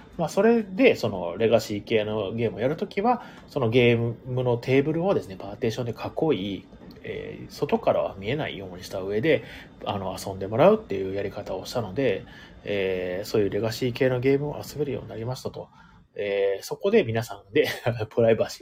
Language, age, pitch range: Japanese, 30-49, 110-160 Hz